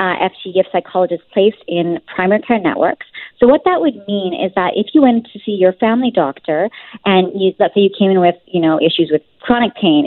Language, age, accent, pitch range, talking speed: English, 30-49, American, 180-225 Hz, 225 wpm